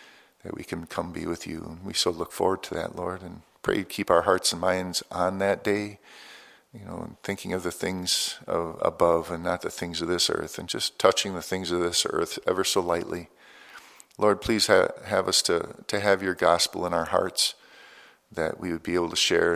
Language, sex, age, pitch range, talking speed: English, male, 50-69, 85-100 Hz, 225 wpm